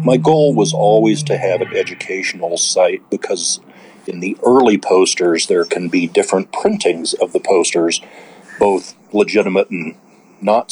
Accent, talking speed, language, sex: American, 145 wpm, English, male